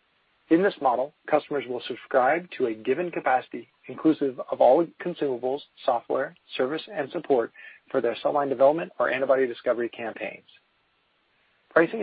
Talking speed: 140 wpm